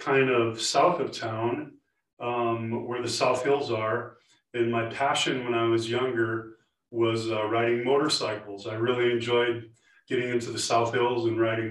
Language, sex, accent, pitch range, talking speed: English, male, American, 115-125 Hz, 165 wpm